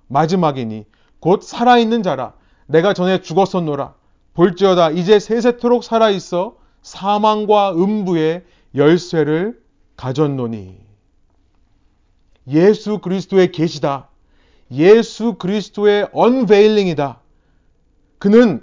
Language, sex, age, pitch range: Korean, male, 30-49, 155-230 Hz